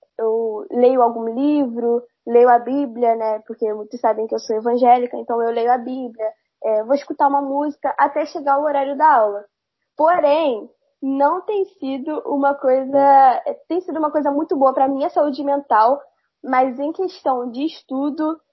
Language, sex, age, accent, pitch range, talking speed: Portuguese, female, 10-29, Brazilian, 235-290 Hz, 170 wpm